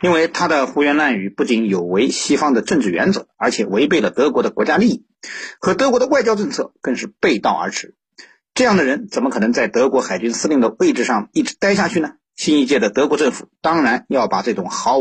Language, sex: Chinese, male